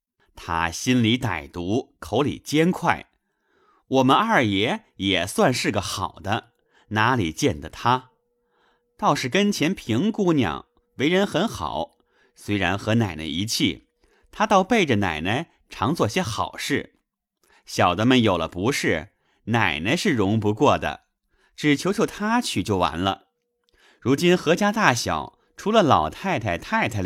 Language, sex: Chinese, male